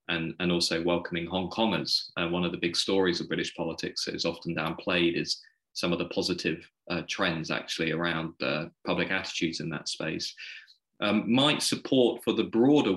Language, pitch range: English, 90-95 Hz